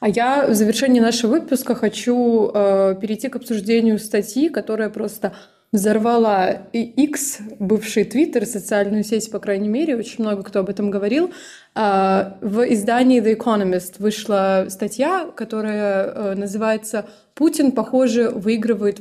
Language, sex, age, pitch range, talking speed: Russian, female, 20-39, 205-240 Hz, 135 wpm